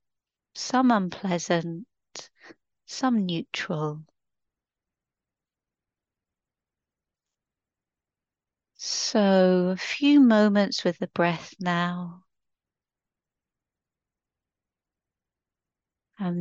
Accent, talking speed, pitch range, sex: British, 50 wpm, 160-185 Hz, female